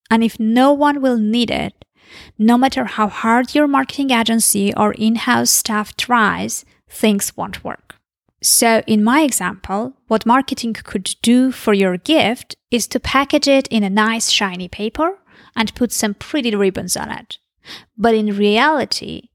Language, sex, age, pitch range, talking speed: English, female, 20-39, 205-260 Hz, 160 wpm